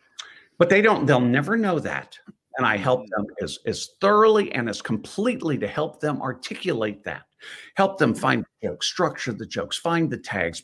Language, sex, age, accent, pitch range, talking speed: English, male, 60-79, American, 130-205 Hz, 185 wpm